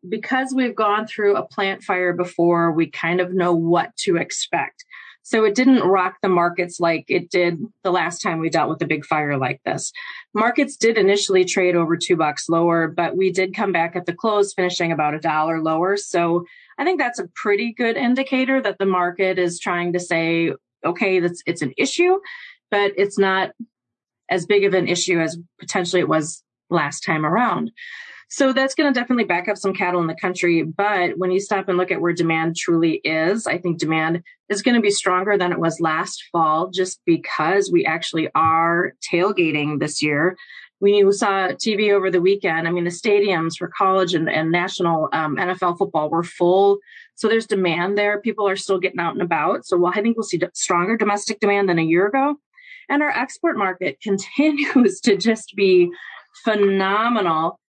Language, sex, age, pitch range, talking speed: English, female, 30-49, 170-210 Hz, 190 wpm